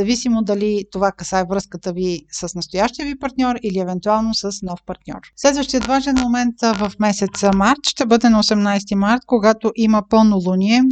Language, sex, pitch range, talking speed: Bulgarian, female, 200-245 Hz, 165 wpm